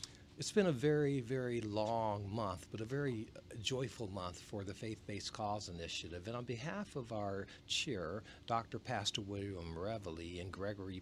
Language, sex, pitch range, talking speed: English, male, 95-115 Hz, 160 wpm